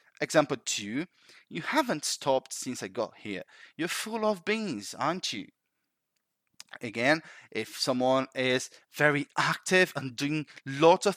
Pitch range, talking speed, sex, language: 125-185 Hz, 135 wpm, male, English